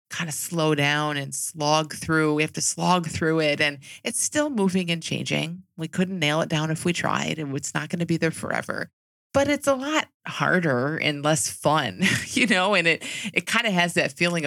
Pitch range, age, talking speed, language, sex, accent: 150-185 Hz, 30-49, 220 wpm, English, female, American